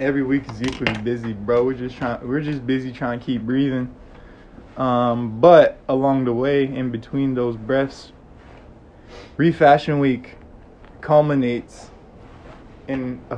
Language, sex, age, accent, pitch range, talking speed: English, male, 20-39, American, 115-135 Hz, 135 wpm